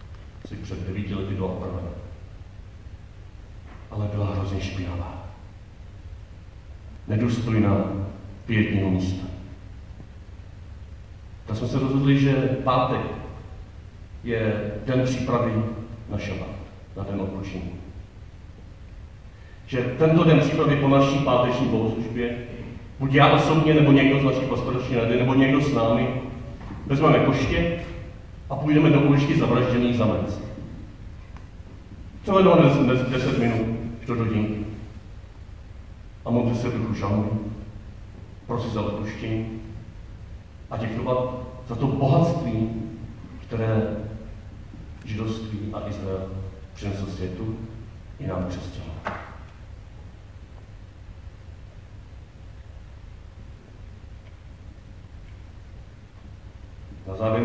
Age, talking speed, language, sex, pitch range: 40-59, 90 wpm, Czech, male, 95-115 Hz